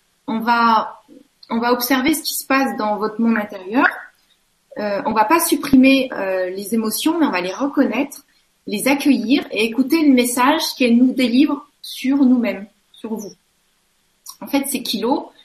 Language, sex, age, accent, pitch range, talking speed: French, female, 30-49, French, 205-270 Hz, 165 wpm